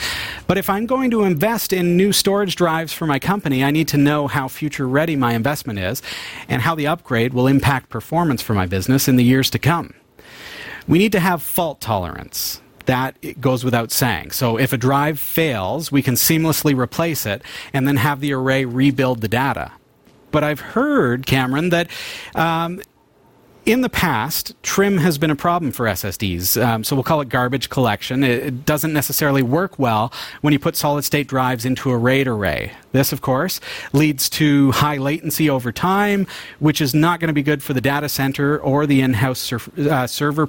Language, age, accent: English, 40-59, American